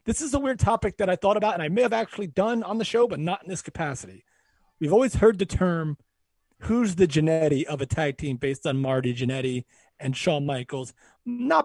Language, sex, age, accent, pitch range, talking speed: English, male, 30-49, American, 140-210 Hz, 220 wpm